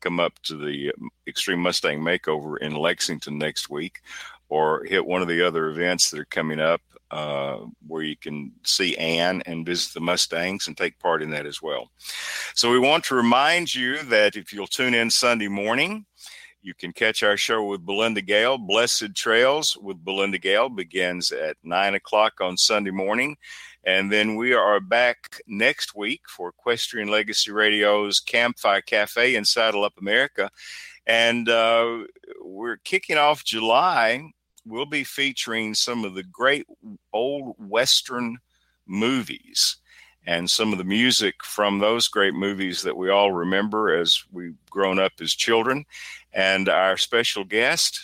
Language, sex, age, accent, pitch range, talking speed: English, male, 50-69, American, 90-115 Hz, 160 wpm